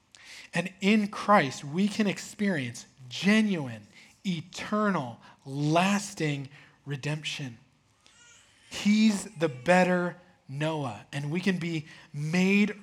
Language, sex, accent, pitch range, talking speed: English, male, American, 115-165 Hz, 90 wpm